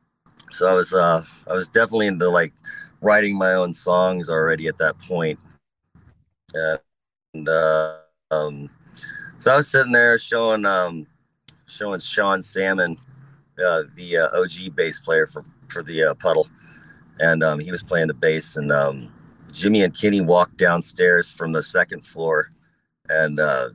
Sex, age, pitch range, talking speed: male, 30-49, 85-120 Hz, 155 wpm